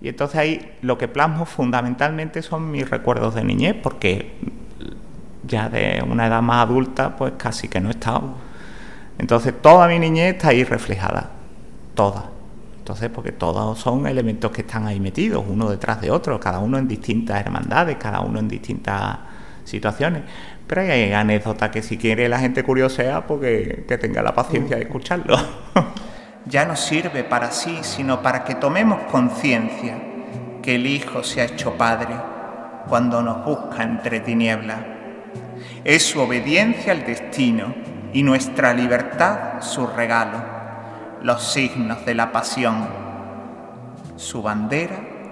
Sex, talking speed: male, 145 wpm